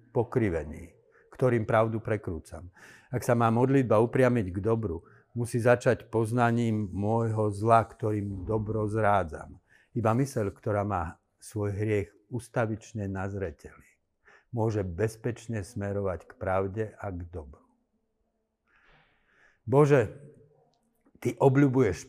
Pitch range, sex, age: 95-120 Hz, male, 60-79